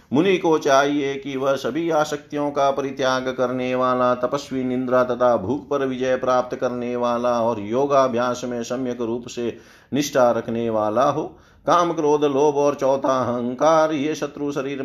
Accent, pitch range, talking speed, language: native, 120-150 Hz, 160 wpm, Hindi